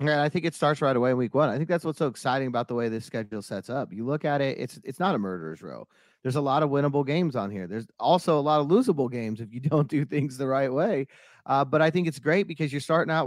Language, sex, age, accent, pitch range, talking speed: English, male, 30-49, American, 135-165 Hz, 300 wpm